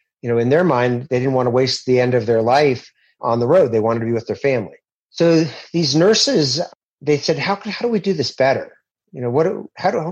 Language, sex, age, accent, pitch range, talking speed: English, male, 40-59, American, 120-145 Hz, 260 wpm